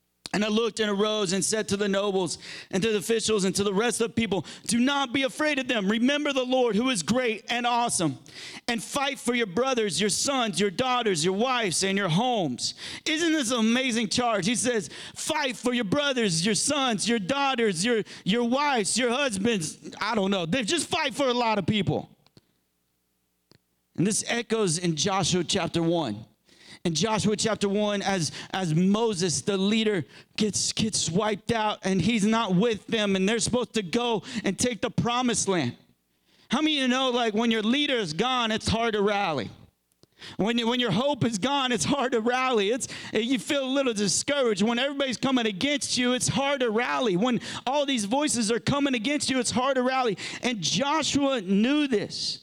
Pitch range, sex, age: 200-250 Hz, male, 40-59